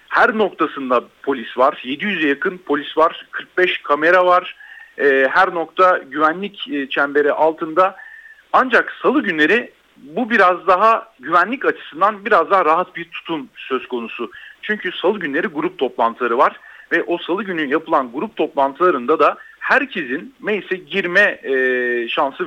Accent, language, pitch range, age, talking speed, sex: native, Turkish, 160-230 Hz, 40-59, 130 wpm, male